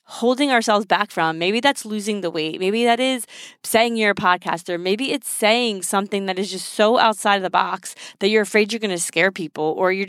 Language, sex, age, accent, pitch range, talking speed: English, female, 20-39, American, 185-235 Hz, 225 wpm